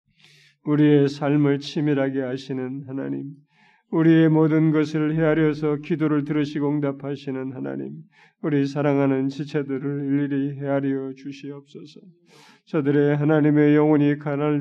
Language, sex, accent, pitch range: Korean, male, native, 140-155 Hz